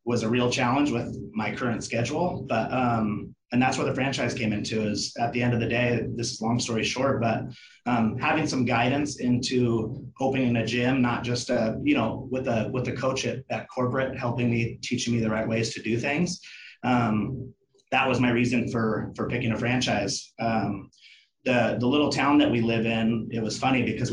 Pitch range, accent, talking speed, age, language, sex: 115-130 Hz, American, 210 wpm, 30-49, English, male